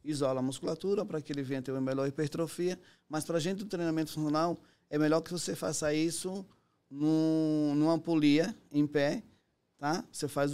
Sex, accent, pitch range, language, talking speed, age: male, Brazilian, 140-160 Hz, Portuguese, 175 wpm, 20-39